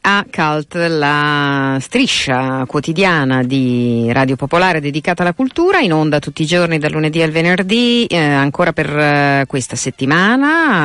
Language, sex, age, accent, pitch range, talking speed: Italian, female, 40-59, native, 135-170 Hz, 145 wpm